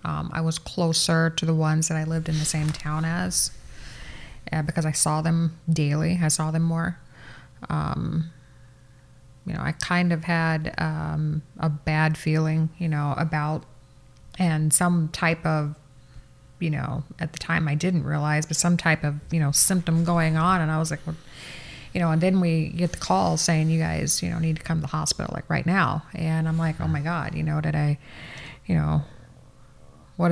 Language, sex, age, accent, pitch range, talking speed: English, female, 30-49, American, 150-175 Hz, 195 wpm